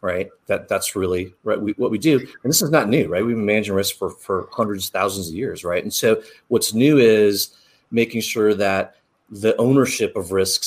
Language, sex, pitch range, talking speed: English, male, 95-110 Hz, 215 wpm